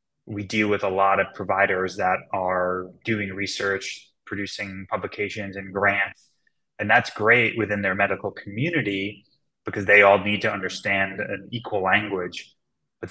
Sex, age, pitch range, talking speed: male, 20-39, 100-110 Hz, 145 wpm